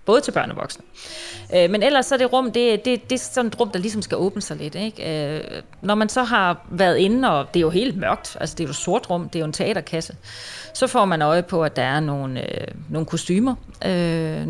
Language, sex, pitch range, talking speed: Danish, female, 160-195 Hz, 250 wpm